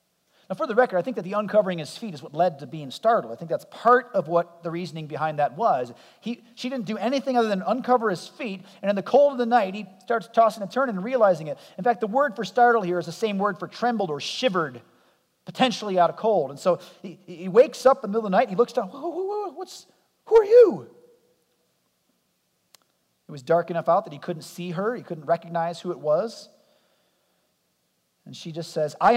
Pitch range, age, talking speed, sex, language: 155-225 Hz, 40-59, 235 wpm, male, English